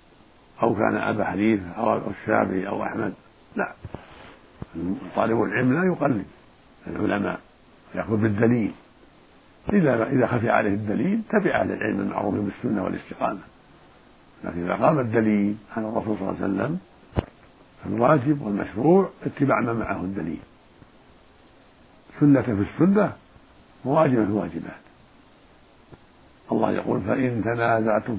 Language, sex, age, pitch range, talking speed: Arabic, male, 60-79, 105-130 Hz, 115 wpm